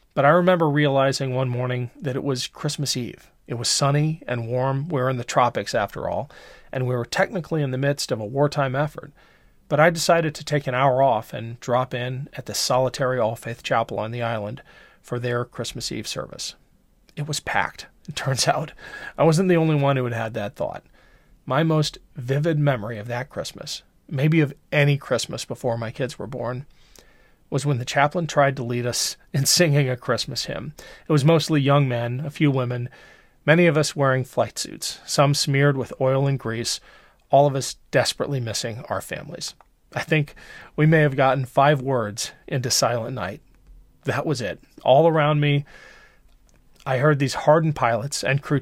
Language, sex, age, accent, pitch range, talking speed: English, male, 40-59, American, 125-150 Hz, 190 wpm